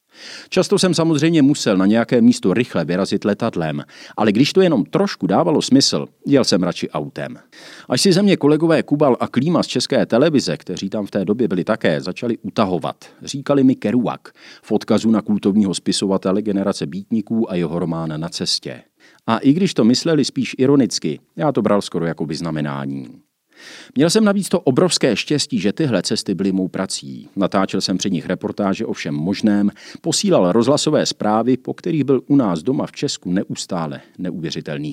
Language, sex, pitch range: Czech, male, 95-145 Hz